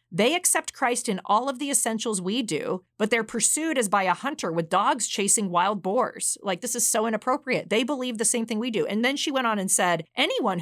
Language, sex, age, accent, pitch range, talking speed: English, female, 30-49, American, 180-250 Hz, 235 wpm